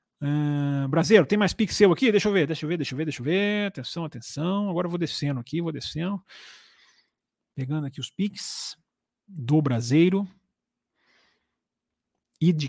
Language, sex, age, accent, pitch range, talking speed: Portuguese, male, 30-49, Brazilian, 130-190 Hz, 170 wpm